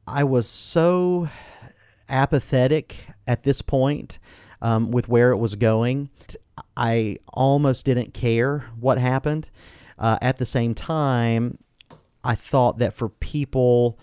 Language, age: English, 40-59